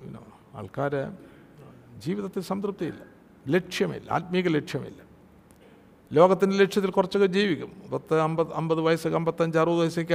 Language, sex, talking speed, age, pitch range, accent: Malayalam, male, 100 wpm, 60-79, 125-170 Hz, native